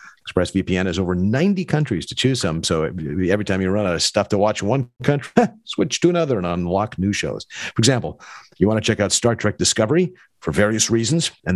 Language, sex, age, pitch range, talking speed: English, male, 50-69, 90-135 Hz, 230 wpm